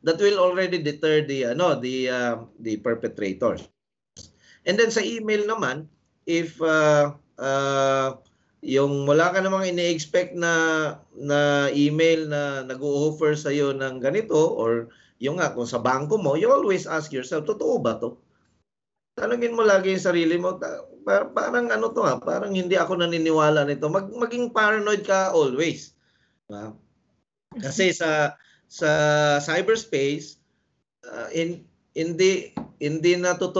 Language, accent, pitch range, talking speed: English, Filipino, 130-180 Hz, 135 wpm